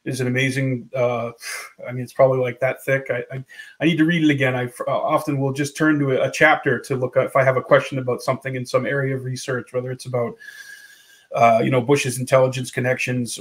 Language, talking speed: English, 235 wpm